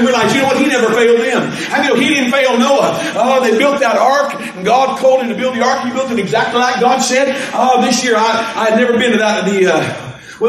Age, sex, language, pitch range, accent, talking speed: 50-69, male, English, 220-265 Hz, American, 270 wpm